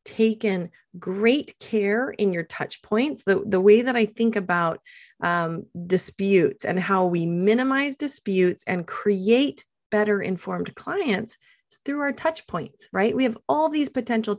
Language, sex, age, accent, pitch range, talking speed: English, female, 30-49, American, 180-235 Hz, 155 wpm